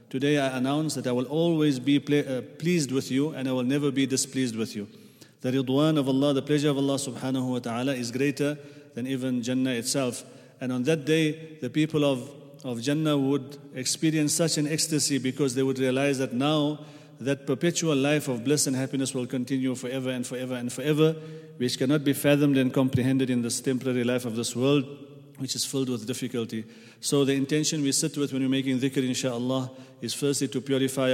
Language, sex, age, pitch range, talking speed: English, male, 40-59, 125-145 Hz, 200 wpm